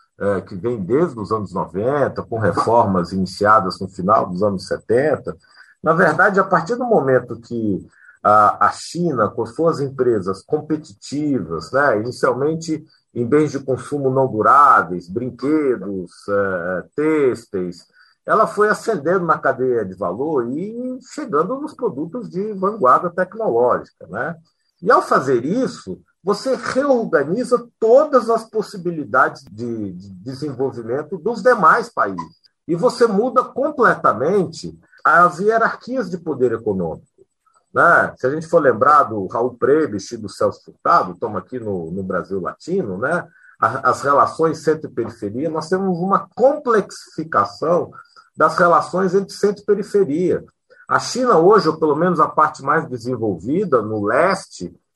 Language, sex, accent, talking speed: Portuguese, male, Brazilian, 130 wpm